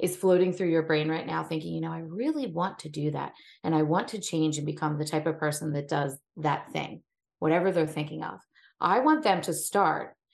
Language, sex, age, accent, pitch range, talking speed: English, female, 30-49, American, 155-195 Hz, 230 wpm